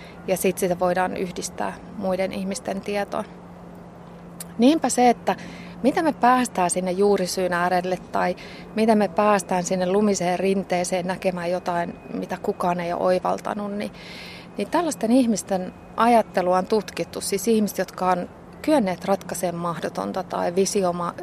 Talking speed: 130 wpm